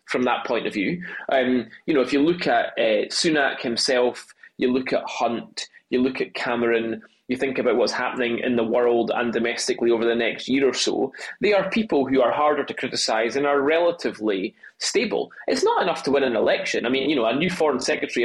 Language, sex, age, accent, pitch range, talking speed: English, male, 20-39, British, 115-155 Hz, 215 wpm